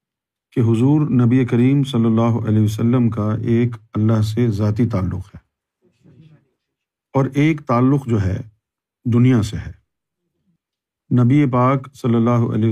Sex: male